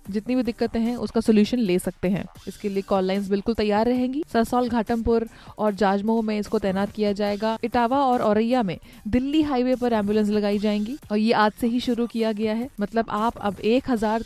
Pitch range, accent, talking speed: 210-250 Hz, native, 210 wpm